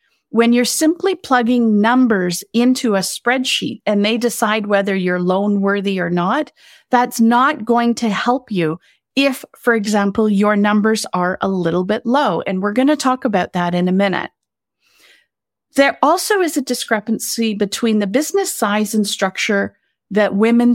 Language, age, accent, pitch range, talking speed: English, 40-59, American, 195-240 Hz, 160 wpm